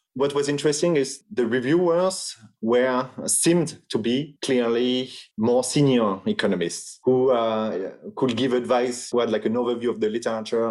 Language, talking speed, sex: English, 150 wpm, male